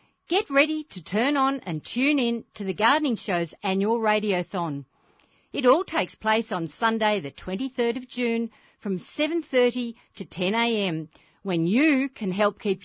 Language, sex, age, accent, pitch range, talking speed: English, female, 50-69, Australian, 185-265 Hz, 155 wpm